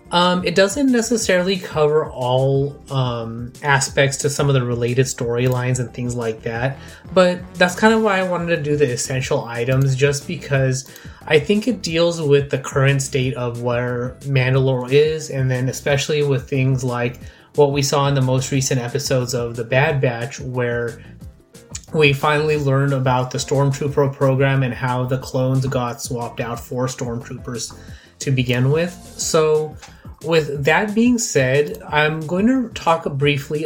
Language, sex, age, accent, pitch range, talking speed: English, male, 20-39, American, 130-150 Hz, 165 wpm